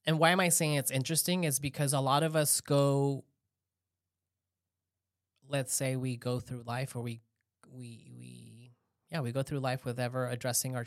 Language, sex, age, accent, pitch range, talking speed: English, male, 20-39, American, 120-145 Hz, 180 wpm